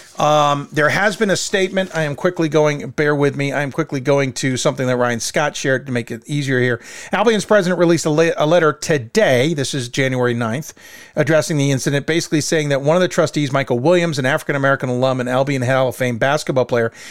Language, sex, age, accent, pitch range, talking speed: English, male, 40-59, American, 135-170 Hz, 220 wpm